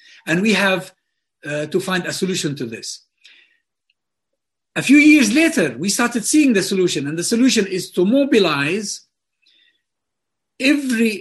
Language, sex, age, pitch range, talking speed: English, male, 60-79, 160-245 Hz, 140 wpm